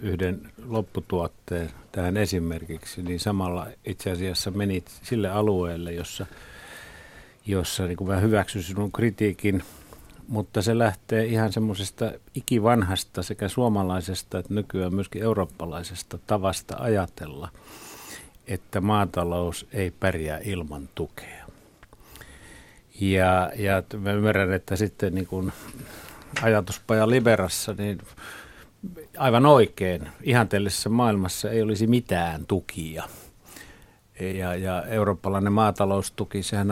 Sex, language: male, Finnish